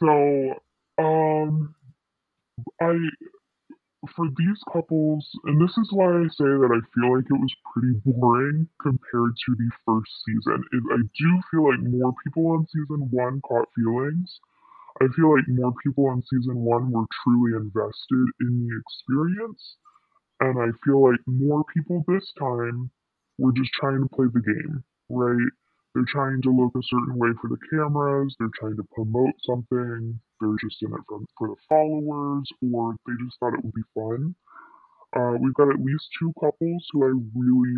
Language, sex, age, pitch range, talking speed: English, female, 20-39, 120-155 Hz, 175 wpm